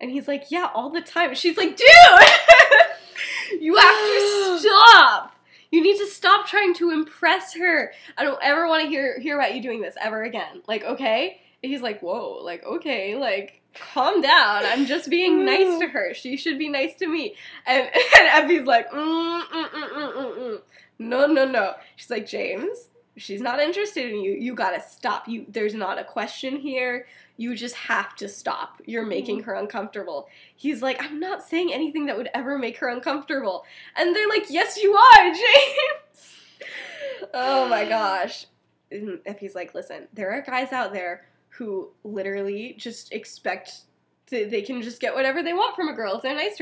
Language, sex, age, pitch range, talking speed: English, female, 10-29, 245-345 Hz, 190 wpm